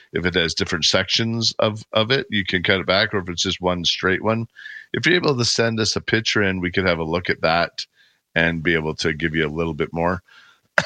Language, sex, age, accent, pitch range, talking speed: English, male, 50-69, American, 90-115 Hz, 255 wpm